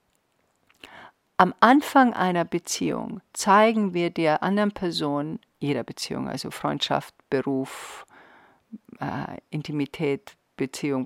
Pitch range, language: 155-210 Hz, German